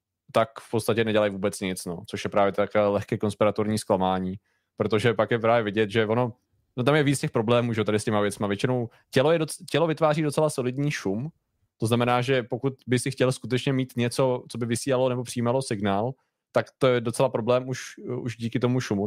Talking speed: 215 wpm